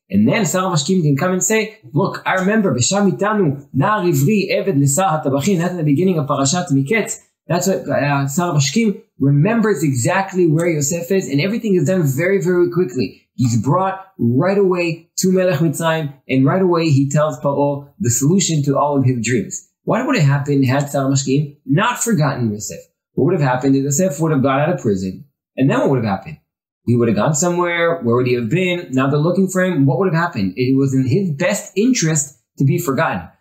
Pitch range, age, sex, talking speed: 135-190 Hz, 20-39, male, 195 wpm